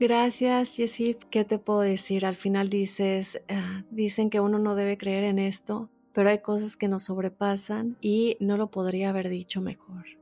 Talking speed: 180 wpm